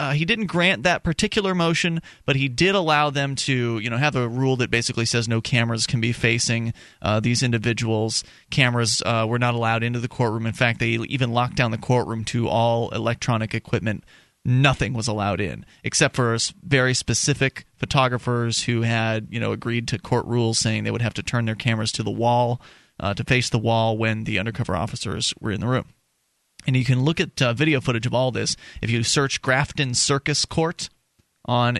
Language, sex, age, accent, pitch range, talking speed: English, male, 30-49, American, 115-145 Hz, 205 wpm